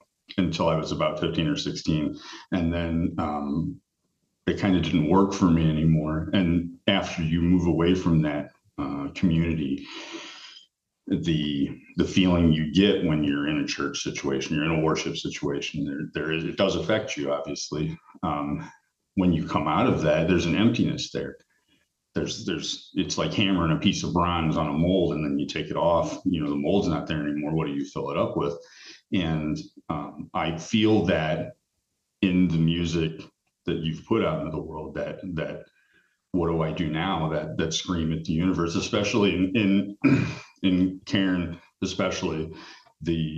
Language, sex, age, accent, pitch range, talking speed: English, male, 40-59, American, 80-90 Hz, 180 wpm